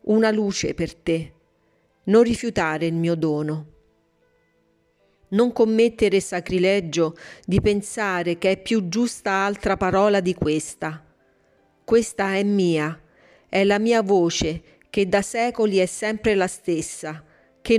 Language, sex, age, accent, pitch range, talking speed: Italian, female, 40-59, native, 160-205 Hz, 125 wpm